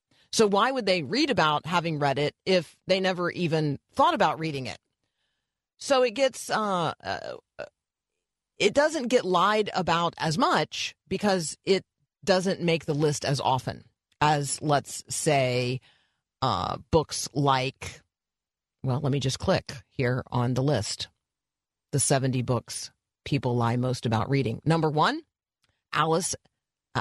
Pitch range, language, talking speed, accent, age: 125-180 Hz, English, 140 wpm, American, 40-59